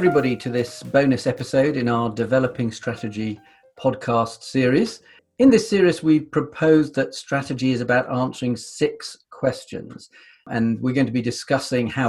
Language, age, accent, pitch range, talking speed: English, 40-59, British, 115-145 Hz, 150 wpm